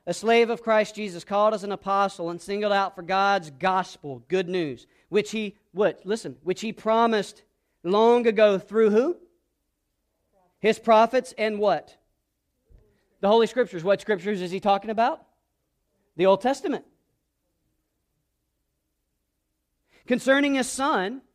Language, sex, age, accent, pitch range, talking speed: English, male, 40-59, American, 165-225 Hz, 130 wpm